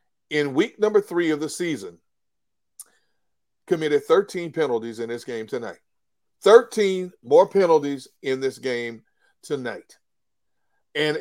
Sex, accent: male, American